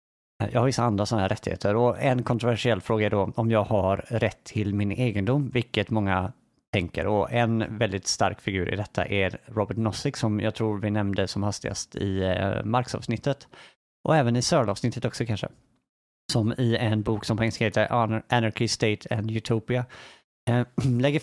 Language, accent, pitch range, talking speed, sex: Swedish, Norwegian, 105-125 Hz, 175 wpm, male